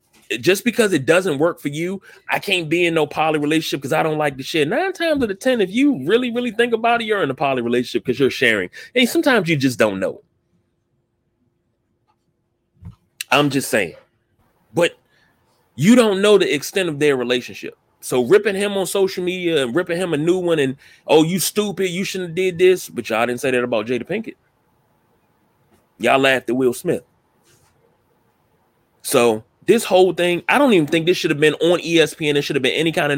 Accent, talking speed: American, 205 wpm